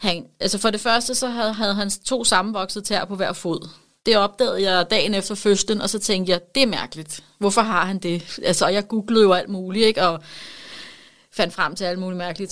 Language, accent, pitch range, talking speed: Danish, native, 185-230 Hz, 225 wpm